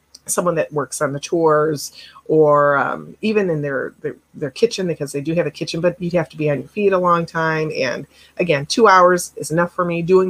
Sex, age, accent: female, 30-49, American